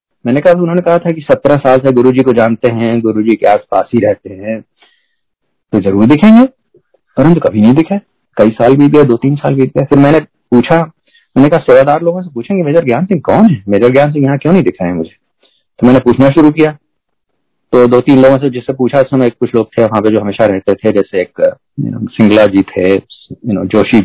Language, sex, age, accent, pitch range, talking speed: Hindi, male, 40-59, native, 125-175 Hz, 210 wpm